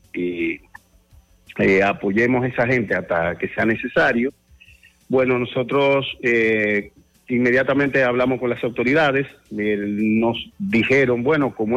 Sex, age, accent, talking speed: male, 50-69, Venezuelan, 115 wpm